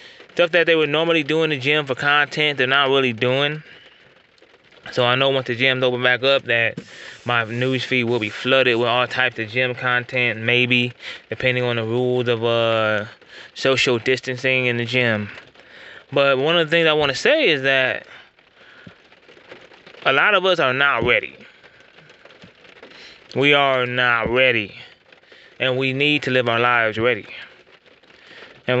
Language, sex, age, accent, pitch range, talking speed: English, male, 20-39, American, 120-145 Hz, 165 wpm